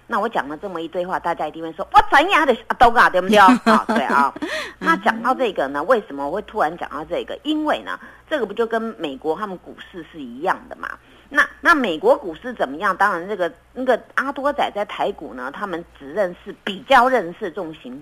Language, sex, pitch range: Chinese, female, 185-275 Hz